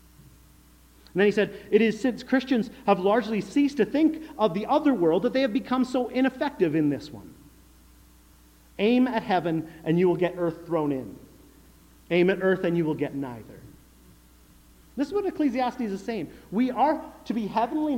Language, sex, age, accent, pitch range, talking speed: English, male, 40-59, American, 145-240 Hz, 185 wpm